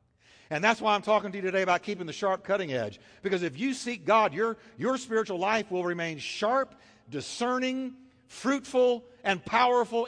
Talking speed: 180 wpm